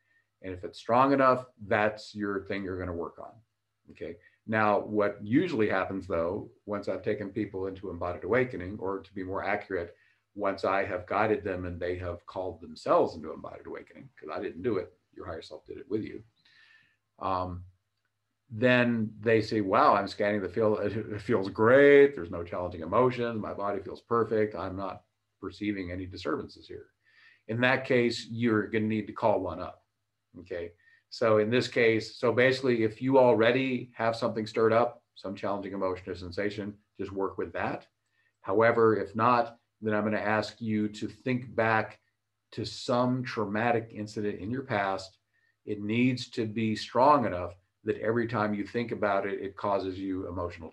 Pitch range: 100-115 Hz